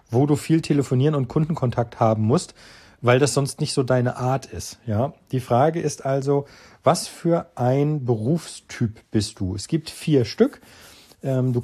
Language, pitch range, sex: German, 110-145 Hz, male